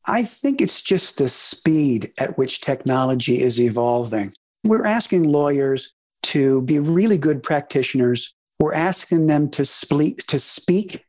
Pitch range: 135-175 Hz